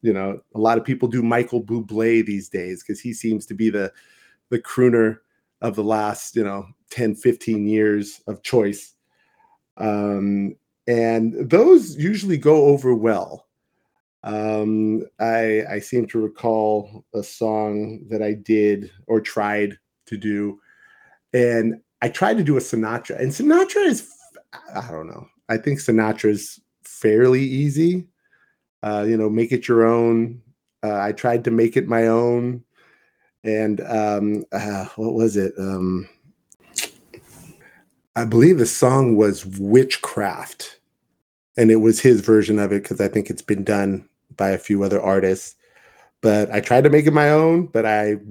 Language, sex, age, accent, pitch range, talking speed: English, male, 30-49, American, 105-120 Hz, 155 wpm